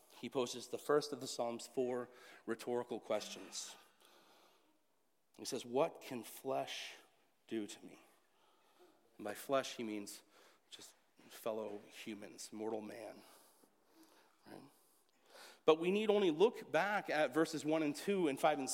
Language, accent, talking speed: English, American, 135 wpm